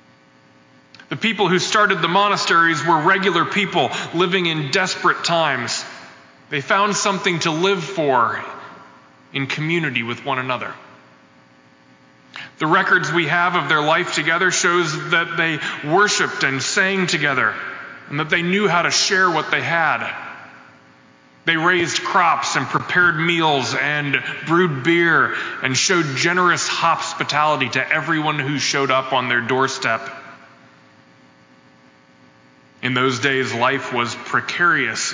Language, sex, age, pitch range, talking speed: English, male, 20-39, 105-165 Hz, 130 wpm